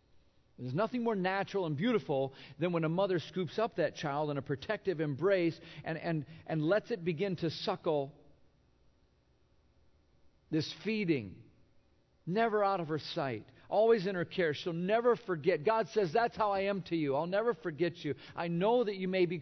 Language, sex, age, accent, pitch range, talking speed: English, male, 50-69, American, 110-175 Hz, 180 wpm